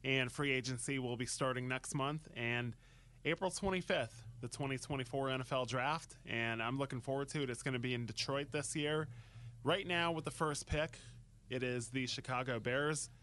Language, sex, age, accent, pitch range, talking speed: English, male, 20-39, American, 115-135 Hz, 180 wpm